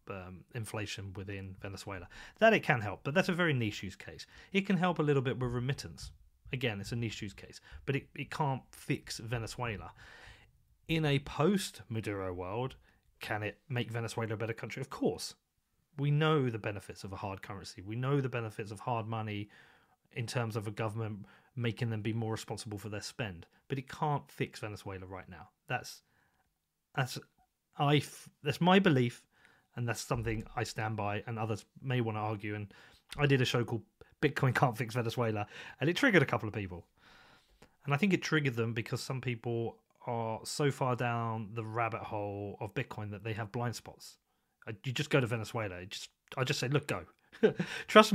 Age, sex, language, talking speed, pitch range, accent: 30-49, male, English, 195 wpm, 105-135 Hz, British